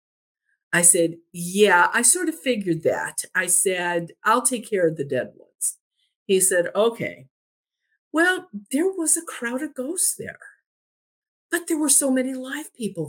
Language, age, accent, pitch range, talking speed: English, 50-69, American, 175-260 Hz, 160 wpm